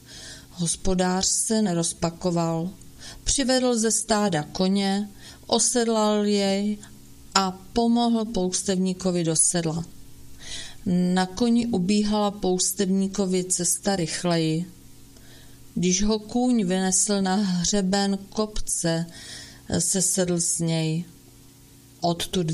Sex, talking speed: female, 85 wpm